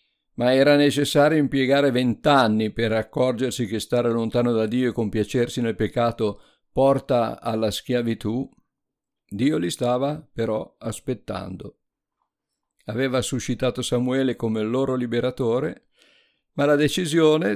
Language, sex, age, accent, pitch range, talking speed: Italian, male, 50-69, native, 110-135 Hz, 115 wpm